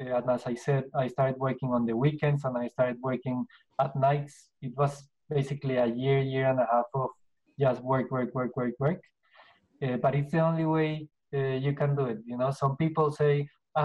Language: English